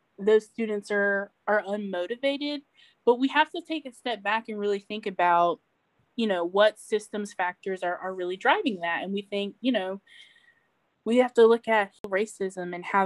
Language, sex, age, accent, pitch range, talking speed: English, female, 20-39, American, 185-220 Hz, 185 wpm